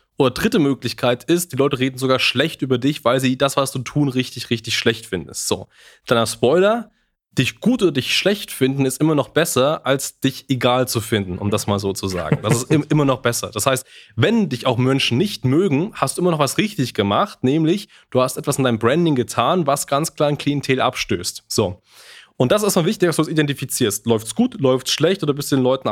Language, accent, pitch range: German, German, 115-140 Hz